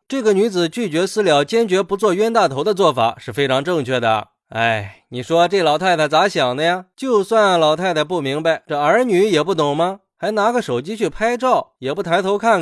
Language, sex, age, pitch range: Chinese, male, 20-39, 150-215 Hz